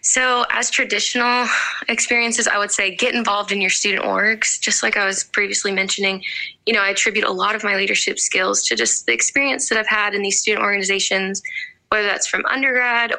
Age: 10-29